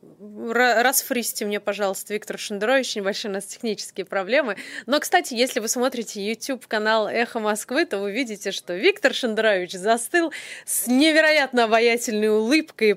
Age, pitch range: 20-39, 200-245 Hz